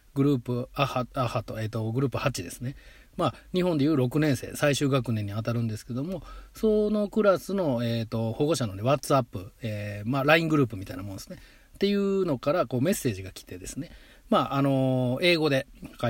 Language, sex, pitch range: Japanese, male, 115-145 Hz